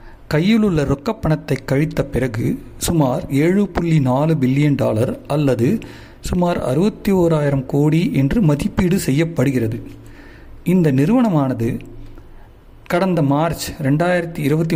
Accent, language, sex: native, Tamil, male